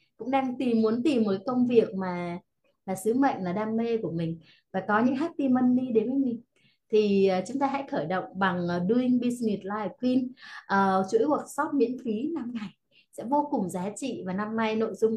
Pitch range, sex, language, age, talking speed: 200-260 Hz, female, Vietnamese, 20-39, 220 wpm